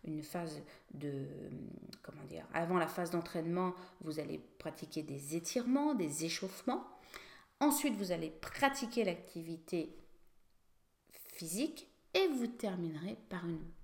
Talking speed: 115 wpm